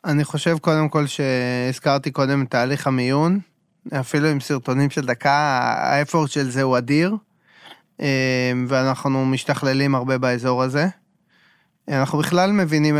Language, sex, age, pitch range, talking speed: Hebrew, male, 20-39, 130-150 Hz, 125 wpm